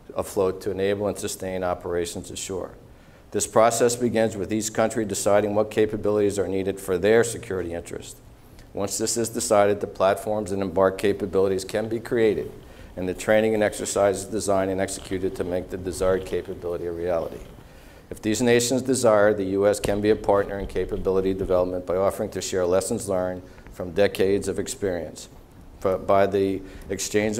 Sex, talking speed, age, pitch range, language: male, 165 wpm, 50-69, 95-110 Hz, English